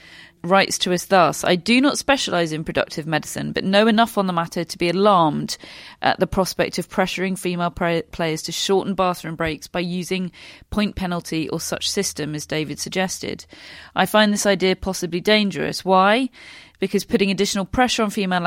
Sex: female